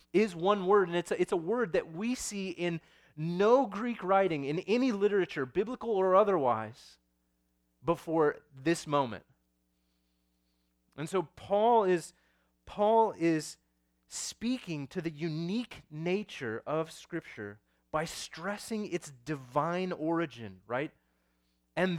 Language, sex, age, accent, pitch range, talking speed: English, male, 30-49, American, 130-195 Hz, 125 wpm